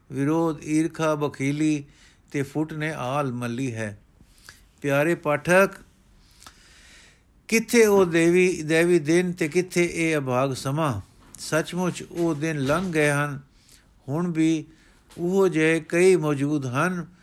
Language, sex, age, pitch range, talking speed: Punjabi, male, 60-79, 130-160 Hz, 120 wpm